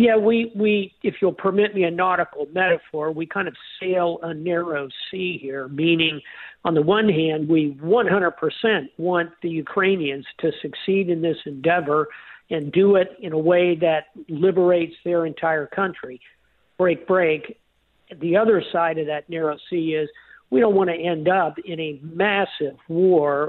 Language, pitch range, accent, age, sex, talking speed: English, 155-185 Hz, American, 50-69, male, 165 wpm